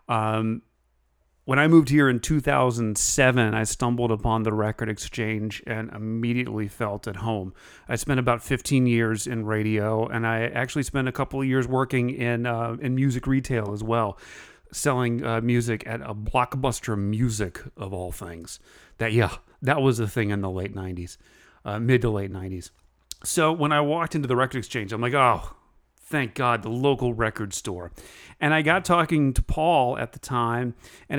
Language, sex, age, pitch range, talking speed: English, male, 40-59, 110-145 Hz, 180 wpm